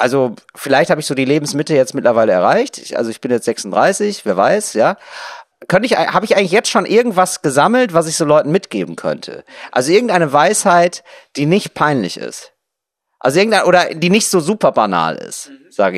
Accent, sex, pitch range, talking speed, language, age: German, male, 150-200 Hz, 190 wpm, German, 40-59